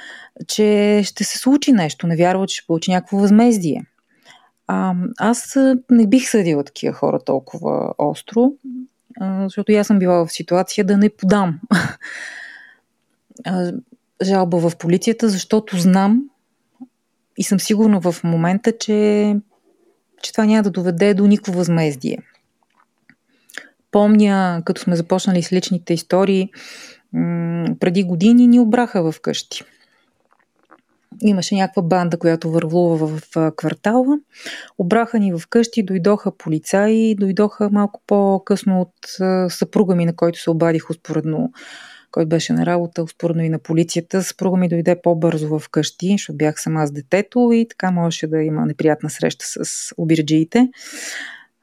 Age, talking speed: 30-49, 130 wpm